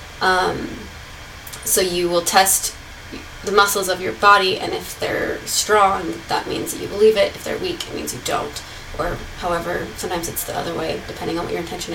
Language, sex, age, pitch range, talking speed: English, female, 20-39, 180-245 Hz, 190 wpm